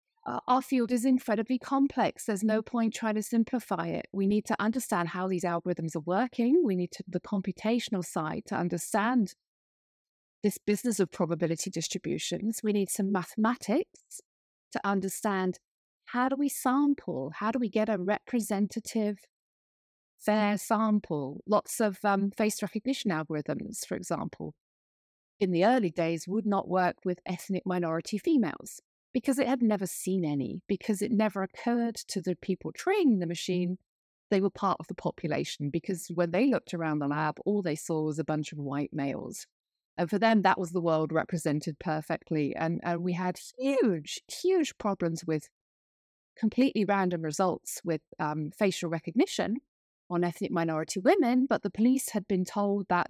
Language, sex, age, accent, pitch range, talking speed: English, female, 30-49, British, 175-225 Hz, 165 wpm